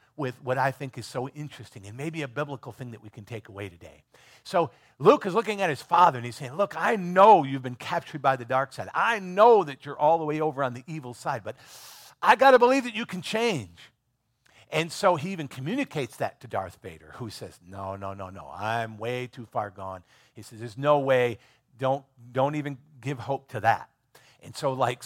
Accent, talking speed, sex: American, 225 wpm, male